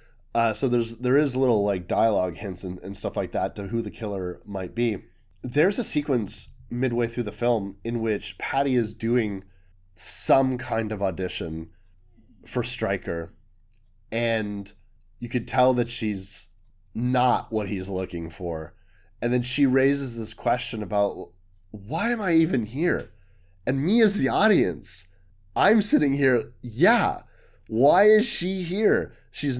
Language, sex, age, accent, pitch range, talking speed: English, male, 30-49, American, 100-140 Hz, 155 wpm